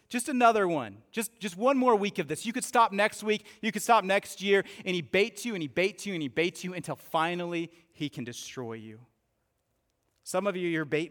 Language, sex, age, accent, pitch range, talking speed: English, male, 30-49, American, 140-195 Hz, 230 wpm